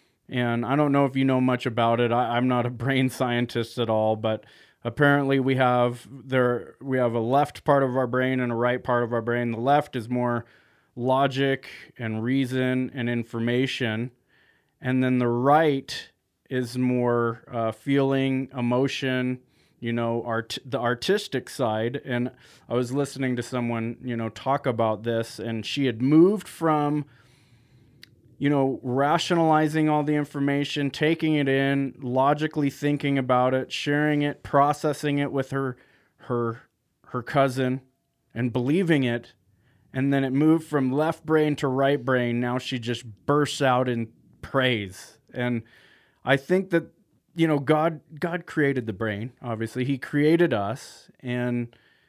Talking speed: 155 wpm